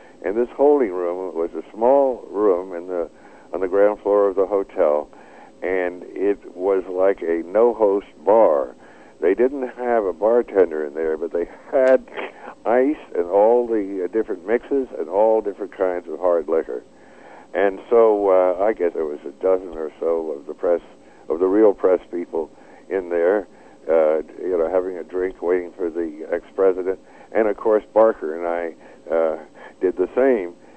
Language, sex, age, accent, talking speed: English, male, 60-79, American, 170 wpm